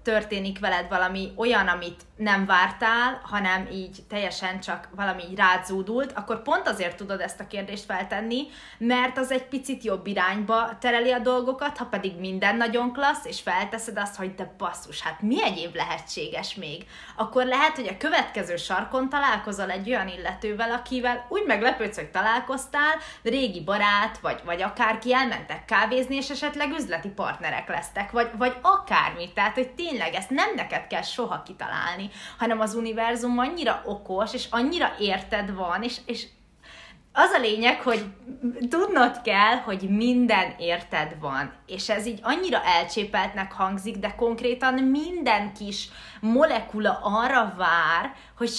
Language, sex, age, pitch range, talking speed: Hungarian, female, 20-39, 195-250 Hz, 150 wpm